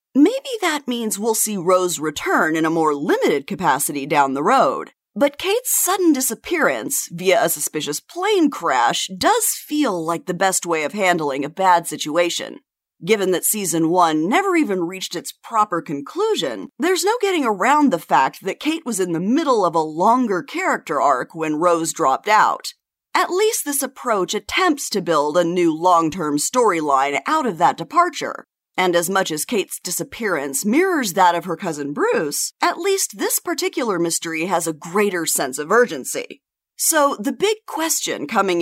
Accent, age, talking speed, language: American, 30-49, 170 wpm, English